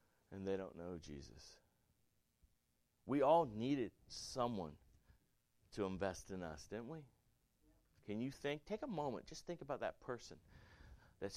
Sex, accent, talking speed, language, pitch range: male, American, 140 wpm, English, 95-150 Hz